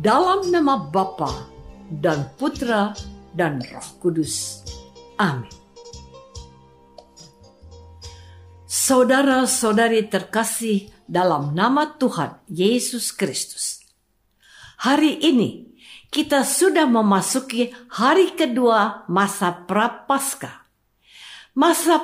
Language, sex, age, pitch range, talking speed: Indonesian, female, 50-69, 190-295 Hz, 70 wpm